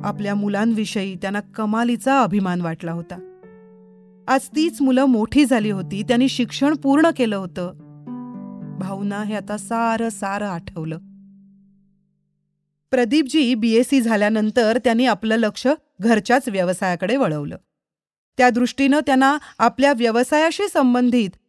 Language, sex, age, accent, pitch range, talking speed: Marathi, female, 30-49, native, 195-265 Hz, 110 wpm